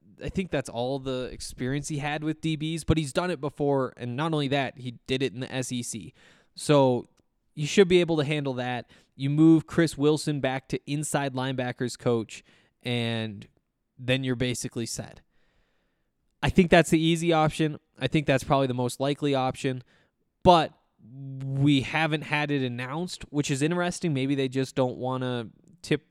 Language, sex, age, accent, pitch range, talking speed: English, male, 20-39, American, 120-150 Hz, 175 wpm